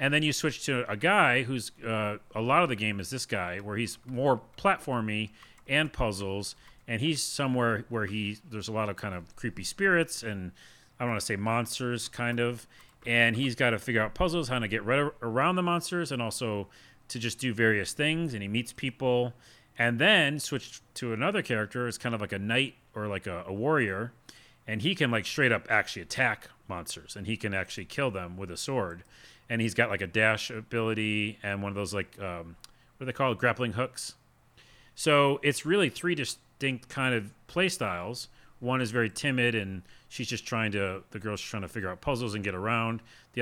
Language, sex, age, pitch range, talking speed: English, male, 40-59, 105-130 Hz, 210 wpm